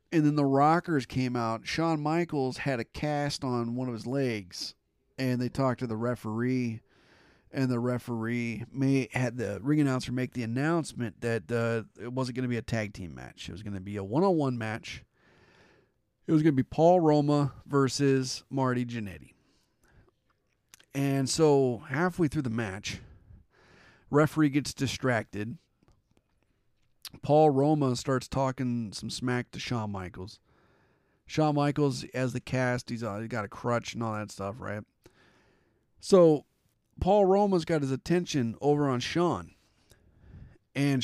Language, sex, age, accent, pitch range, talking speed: English, male, 40-59, American, 110-145 Hz, 150 wpm